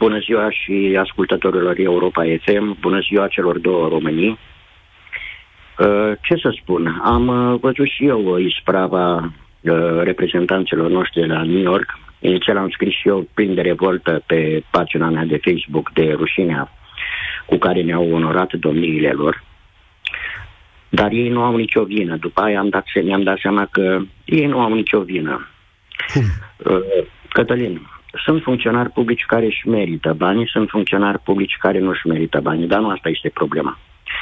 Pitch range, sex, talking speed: 90-115 Hz, male, 150 wpm